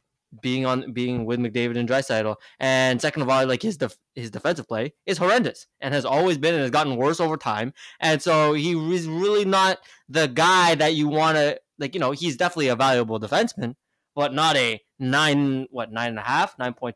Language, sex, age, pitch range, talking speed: English, male, 20-39, 125-155 Hz, 210 wpm